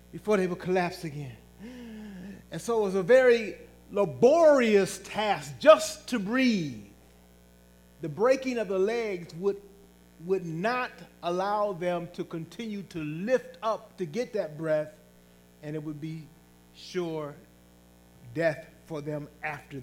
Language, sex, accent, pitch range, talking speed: English, male, American, 150-215 Hz, 135 wpm